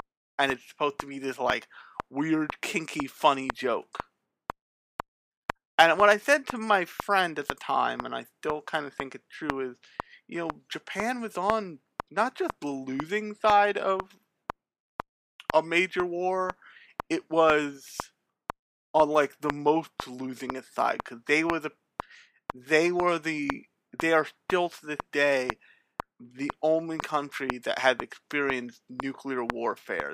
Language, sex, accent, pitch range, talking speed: English, male, American, 135-175 Hz, 150 wpm